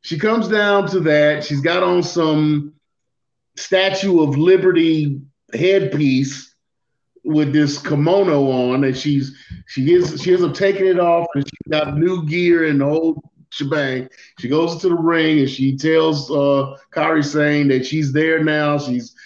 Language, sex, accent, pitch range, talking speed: English, male, American, 135-165 Hz, 160 wpm